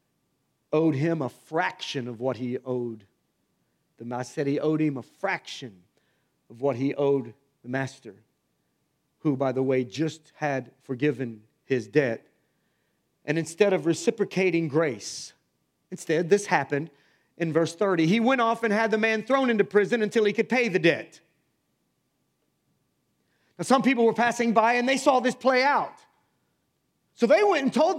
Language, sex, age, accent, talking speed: English, male, 40-59, American, 160 wpm